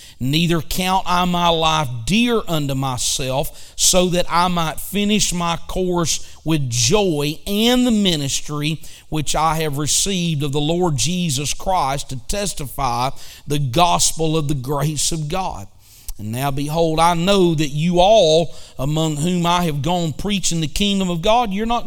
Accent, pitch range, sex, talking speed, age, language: American, 145-185 Hz, male, 160 wpm, 40-59, English